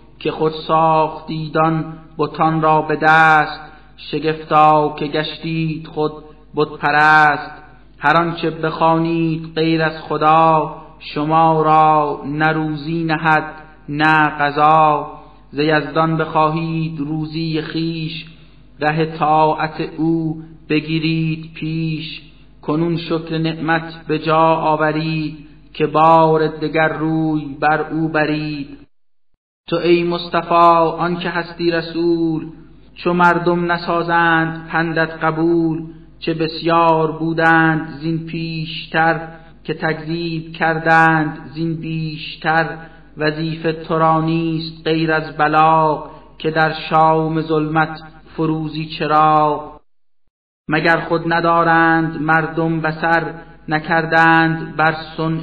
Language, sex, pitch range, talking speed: Persian, male, 155-160 Hz, 95 wpm